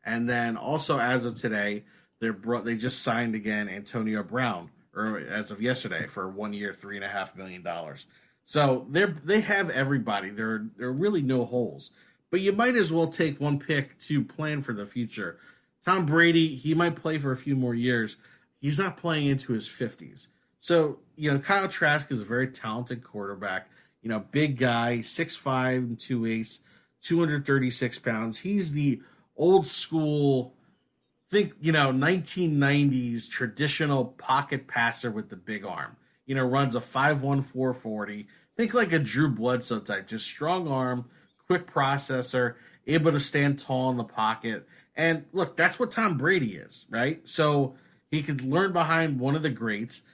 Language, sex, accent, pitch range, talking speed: English, male, American, 115-155 Hz, 175 wpm